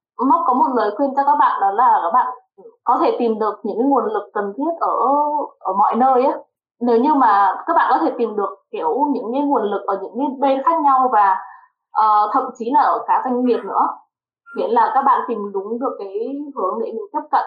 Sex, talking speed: female, 235 wpm